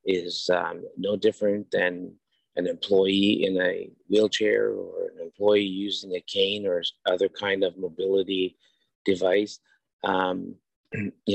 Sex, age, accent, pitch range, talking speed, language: male, 50-69, American, 95-110 Hz, 125 wpm, English